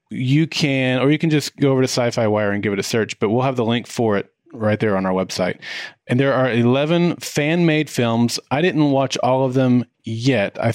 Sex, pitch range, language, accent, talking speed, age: male, 110-140 Hz, English, American, 235 wpm, 30-49